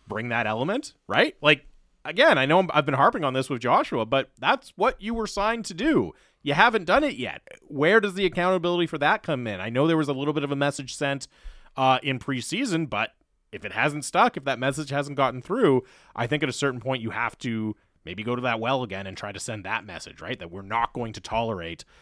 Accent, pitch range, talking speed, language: American, 110-145 Hz, 245 wpm, English